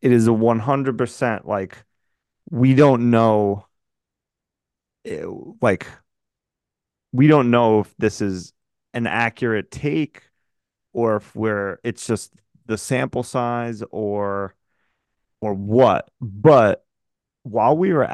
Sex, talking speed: male, 110 wpm